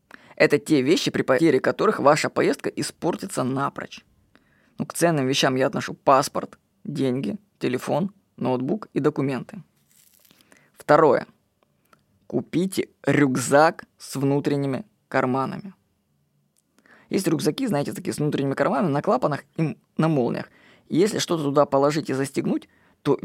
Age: 20-39